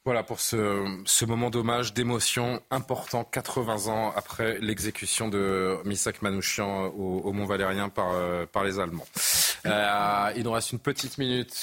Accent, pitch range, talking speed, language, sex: French, 100-125 Hz, 150 wpm, French, male